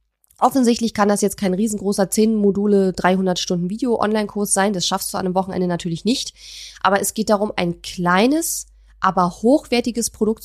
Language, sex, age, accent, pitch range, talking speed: German, female, 20-39, German, 180-220 Hz, 145 wpm